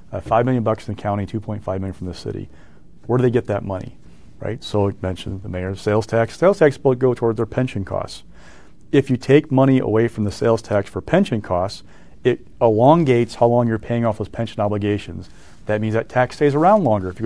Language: English